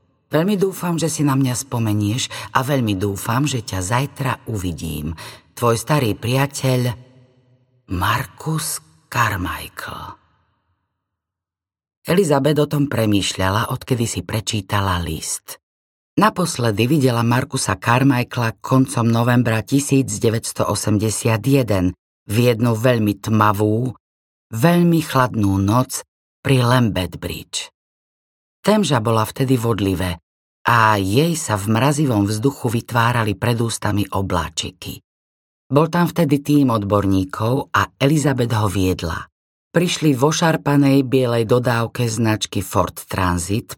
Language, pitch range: Slovak, 100-140 Hz